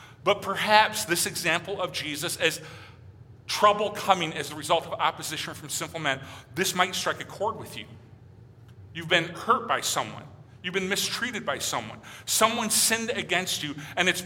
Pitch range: 145-215 Hz